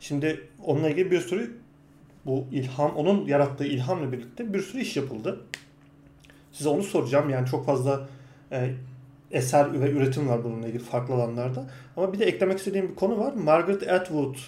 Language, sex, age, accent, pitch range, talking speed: Turkish, male, 40-59, native, 130-155 Hz, 160 wpm